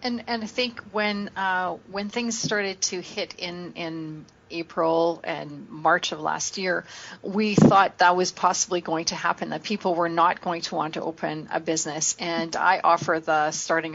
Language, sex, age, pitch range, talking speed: English, female, 40-59, 165-190 Hz, 185 wpm